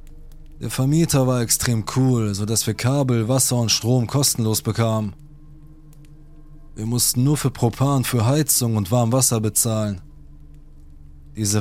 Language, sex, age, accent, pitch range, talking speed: German, male, 20-39, German, 110-135 Hz, 130 wpm